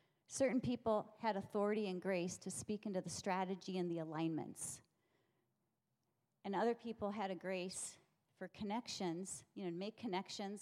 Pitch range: 185-235 Hz